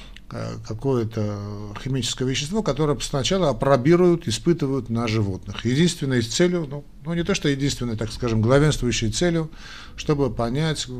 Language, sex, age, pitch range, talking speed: Russian, male, 50-69, 110-145 Hz, 125 wpm